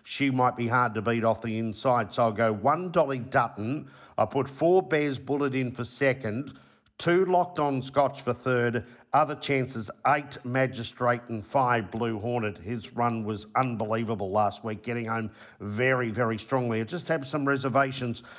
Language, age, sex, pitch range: English, 50-69, male, 110-135 Hz